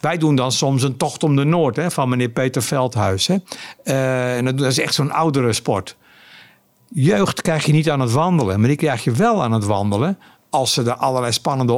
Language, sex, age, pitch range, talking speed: Dutch, male, 60-79, 130-165 Hz, 220 wpm